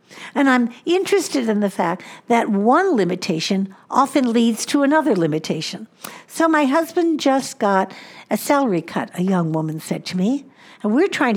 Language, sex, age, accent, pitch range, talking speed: English, female, 60-79, American, 200-280 Hz, 165 wpm